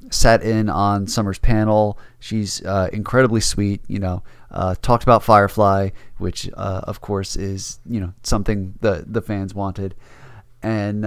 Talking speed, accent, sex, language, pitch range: 150 wpm, American, male, English, 95-115 Hz